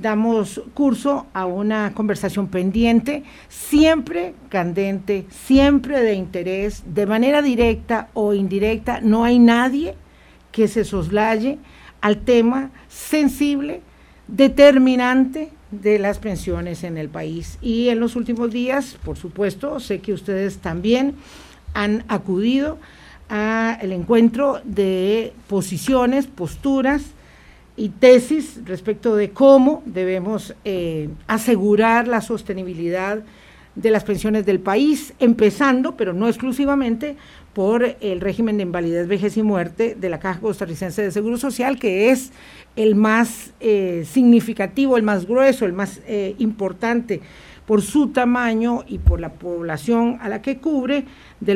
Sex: female